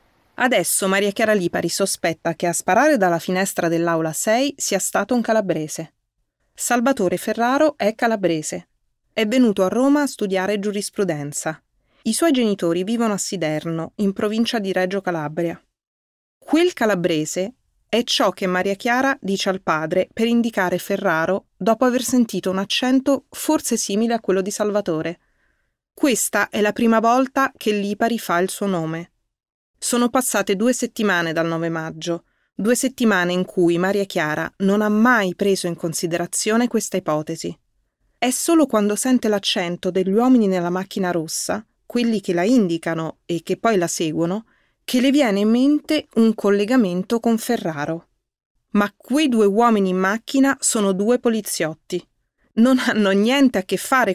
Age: 30-49